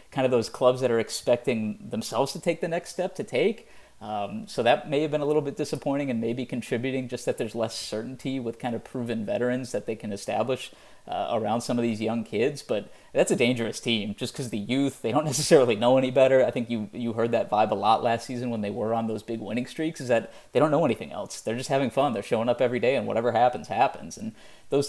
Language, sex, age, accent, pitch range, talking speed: English, male, 30-49, American, 110-135 Hz, 255 wpm